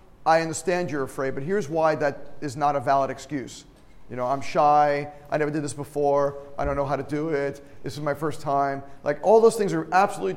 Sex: male